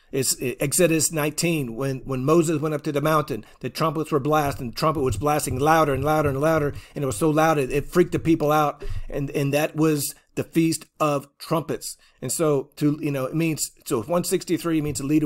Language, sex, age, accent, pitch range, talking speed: English, male, 40-59, American, 140-165 Hz, 210 wpm